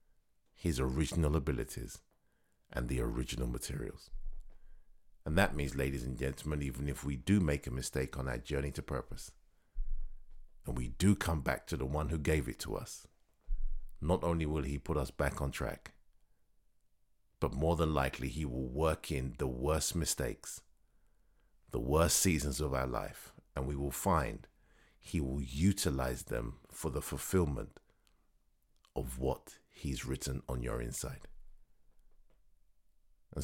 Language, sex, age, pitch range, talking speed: English, male, 60-79, 65-80 Hz, 150 wpm